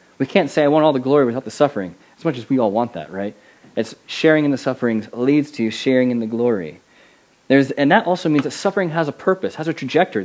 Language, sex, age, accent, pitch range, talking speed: English, male, 30-49, American, 115-155 Hz, 250 wpm